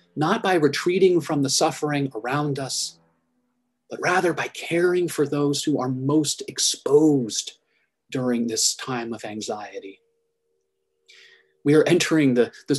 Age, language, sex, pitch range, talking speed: 30-49, English, male, 135-195 Hz, 130 wpm